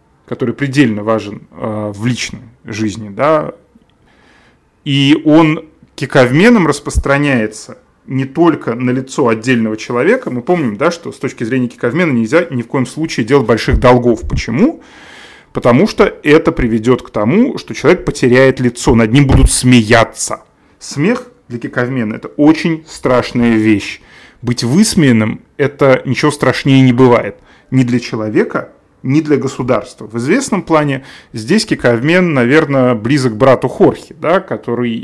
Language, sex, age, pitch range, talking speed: Russian, male, 30-49, 120-150 Hz, 135 wpm